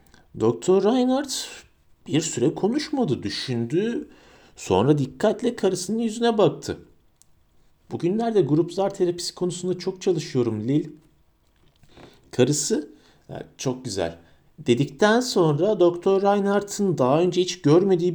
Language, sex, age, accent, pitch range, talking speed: Turkish, male, 50-69, native, 125-185 Hz, 100 wpm